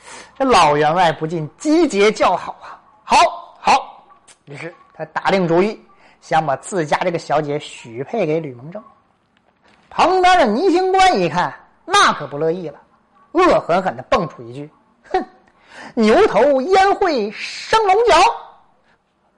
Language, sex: Chinese, male